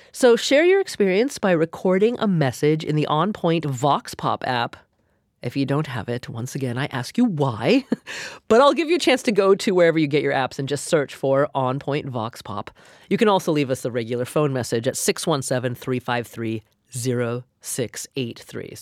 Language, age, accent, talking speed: English, 30-49, American, 180 wpm